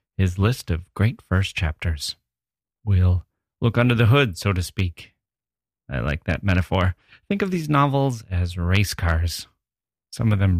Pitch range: 90-115 Hz